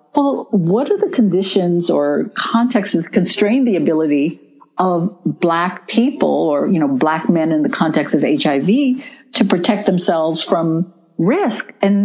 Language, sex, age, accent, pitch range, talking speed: English, female, 50-69, American, 155-215 Hz, 150 wpm